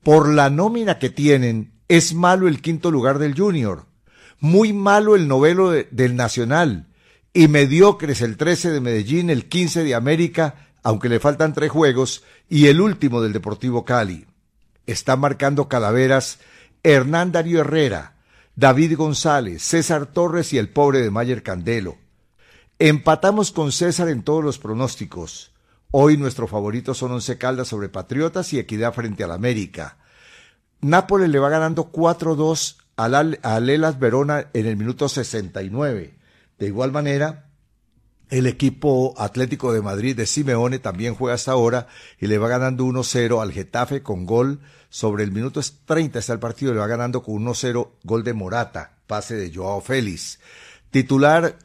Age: 60-79